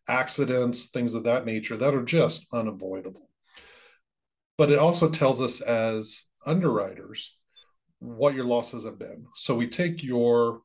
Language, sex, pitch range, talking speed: English, male, 115-140 Hz, 140 wpm